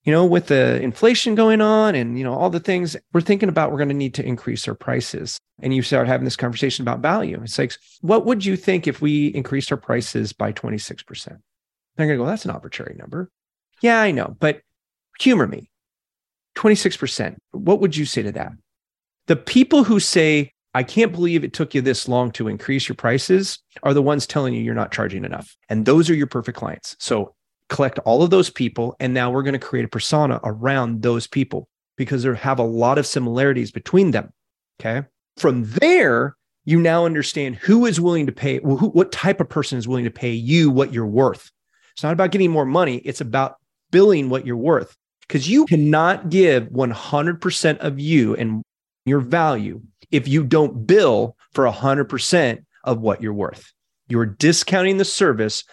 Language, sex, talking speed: English, male, 195 wpm